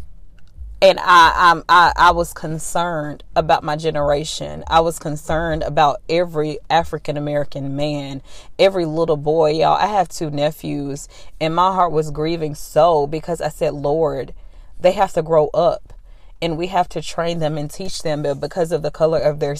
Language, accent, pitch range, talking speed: English, American, 145-175 Hz, 170 wpm